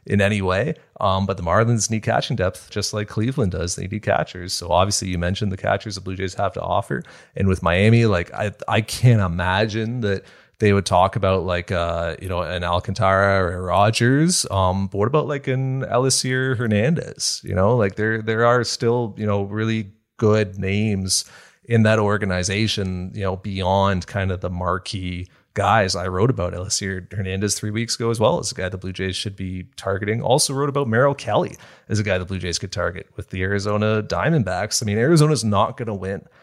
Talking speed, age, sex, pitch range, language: 205 wpm, 30-49, male, 95-110 Hz, English